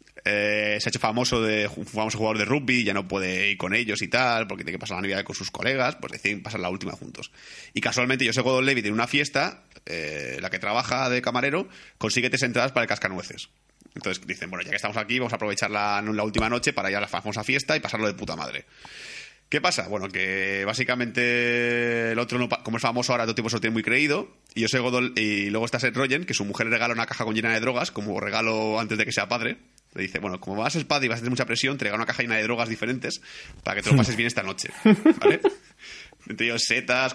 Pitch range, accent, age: 110-130 Hz, Spanish, 20-39